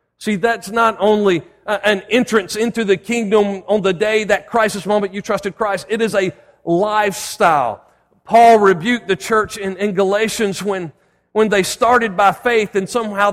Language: English